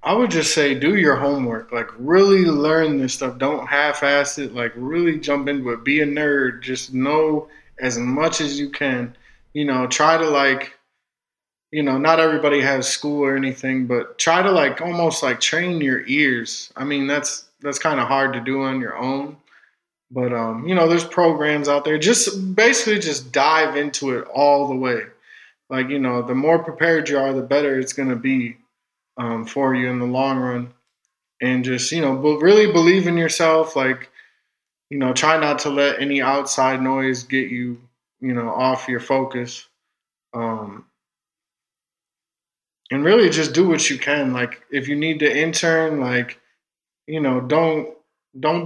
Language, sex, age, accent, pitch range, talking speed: English, male, 20-39, American, 130-155 Hz, 180 wpm